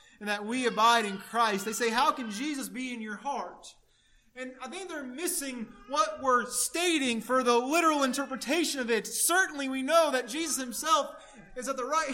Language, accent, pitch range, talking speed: English, American, 260-345 Hz, 195 wpm